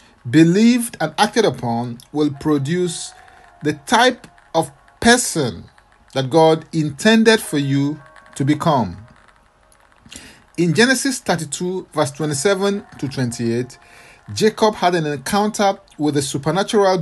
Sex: male